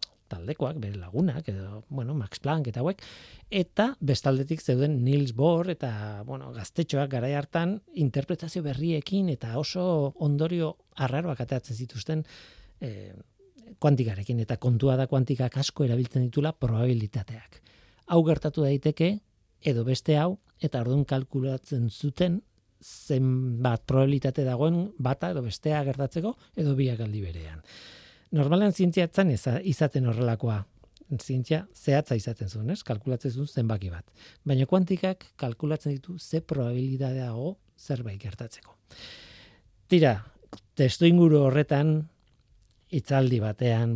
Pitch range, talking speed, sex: 115-155 Hz, 100 wpm, male